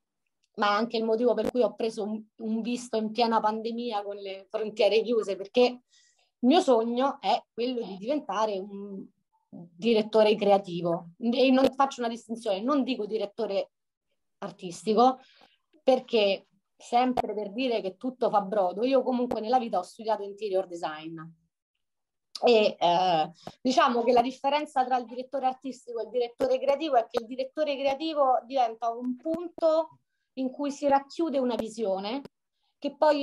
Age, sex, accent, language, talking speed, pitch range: 30-49, female, native, Italian, 155 wpm, 210-260 Hz